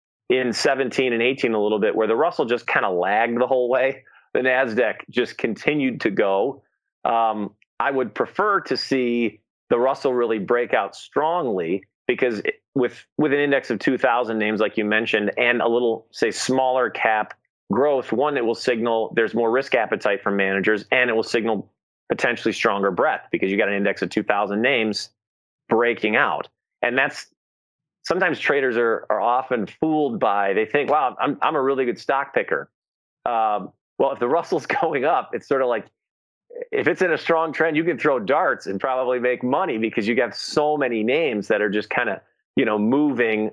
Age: 30-49